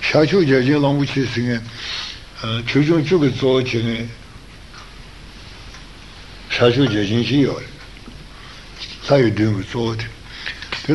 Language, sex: Italian, male